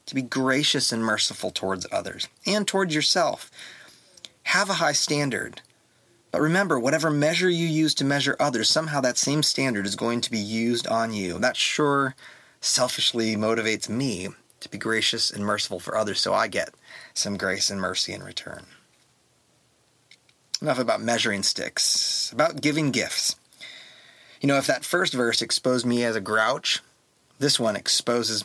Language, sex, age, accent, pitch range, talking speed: English, male, 30-49, American, 115-150 Hz, 160 wpm